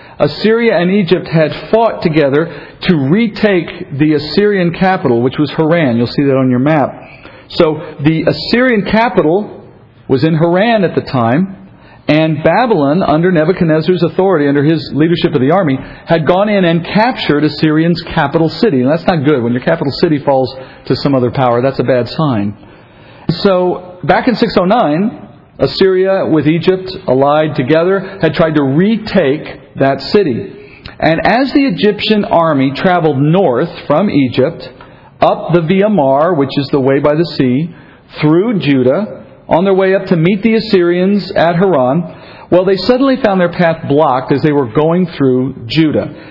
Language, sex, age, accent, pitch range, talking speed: English, male, 50-69, American, 140-190 Hz, 160 wpm